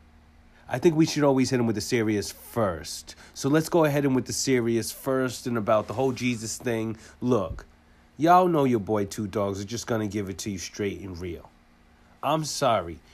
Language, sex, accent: English, male, American